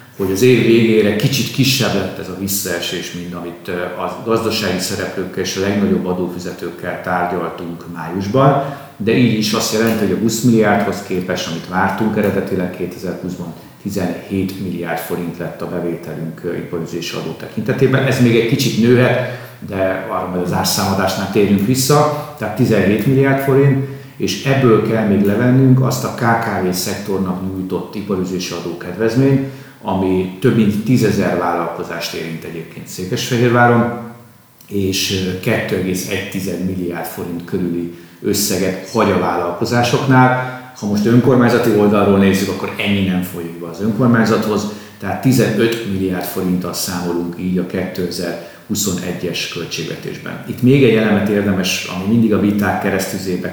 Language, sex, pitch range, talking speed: Hungarian, male, 90-115 Hz, 135 wpm